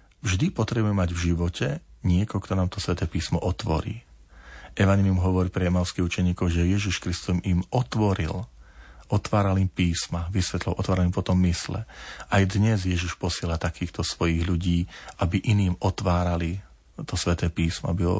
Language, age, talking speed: Slovak, 40-59, 150 wpm